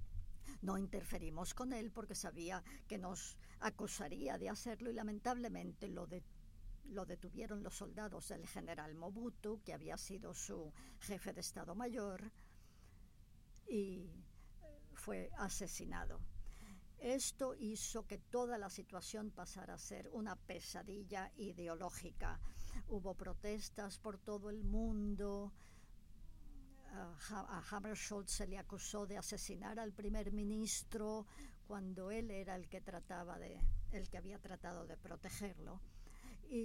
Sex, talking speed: male, 120 wpm